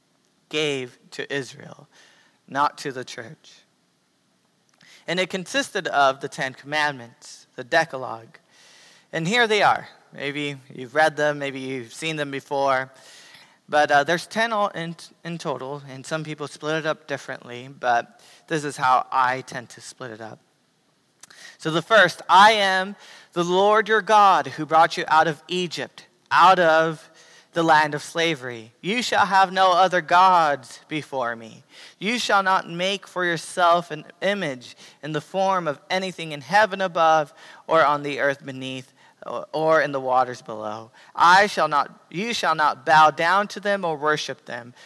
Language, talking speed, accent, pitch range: English, 165 wpm, American, 140-180 Hz